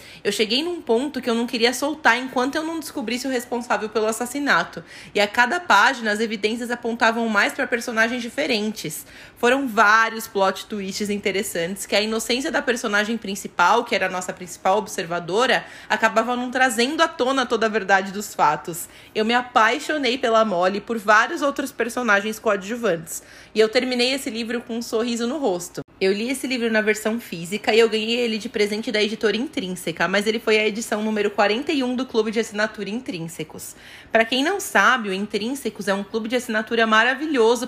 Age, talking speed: 20-39, 185 wpm